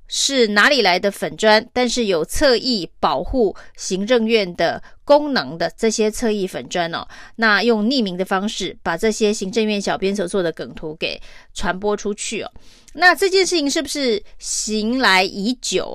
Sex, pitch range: female, 195-245 Hz